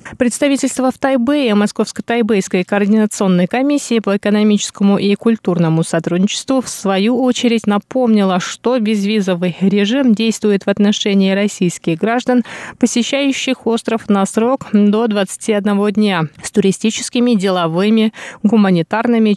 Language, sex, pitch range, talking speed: Russian, female, 190-235 Hz, 105 wpm